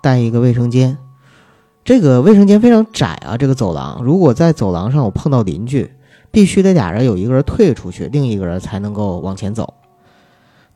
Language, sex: Chinese, male